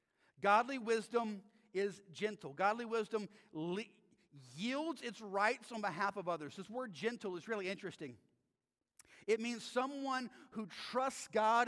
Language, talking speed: English, 135 wpm